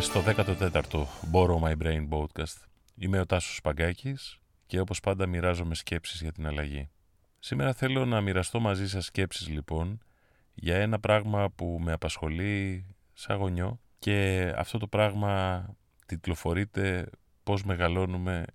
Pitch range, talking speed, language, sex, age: 85-105 Hz, 135 wpm, Greek, male, 30-49